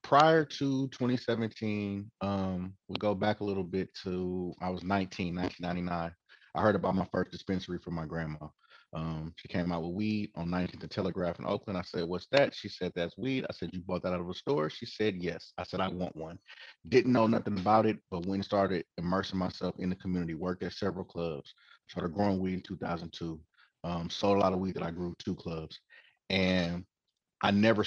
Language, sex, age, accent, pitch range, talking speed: English, male, 30-49, American, 85-100 Hz, 210 wpm